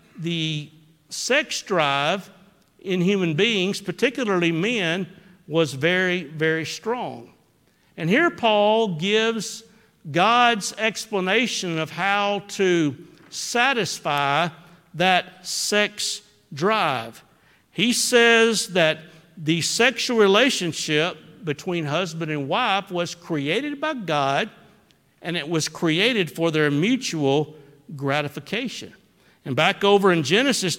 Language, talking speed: English, 100 wpm